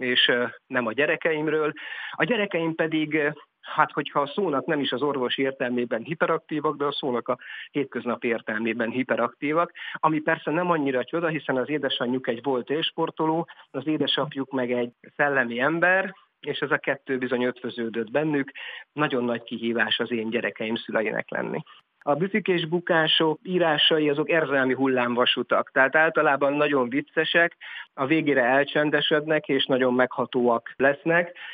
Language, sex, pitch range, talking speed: Hungarian, male, 125-155 Hz, 140 wpm